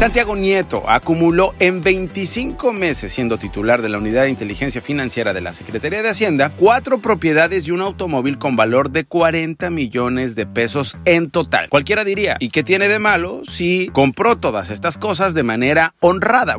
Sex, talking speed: male, 175 wpm